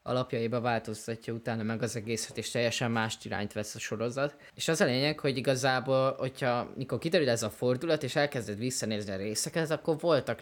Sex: male